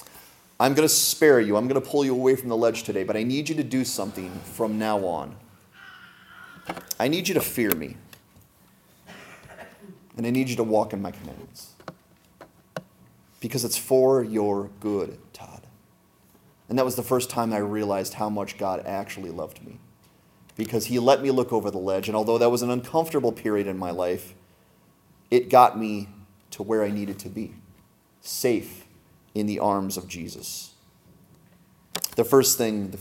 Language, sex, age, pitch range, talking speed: English, male, 30-49, 100-140 Hz, 175 wpm